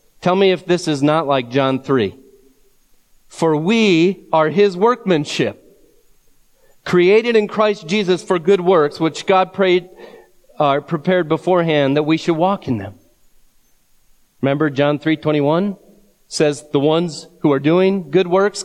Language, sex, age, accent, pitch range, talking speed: English, male, 40-59, American, 140-185 Hz, 140 wpm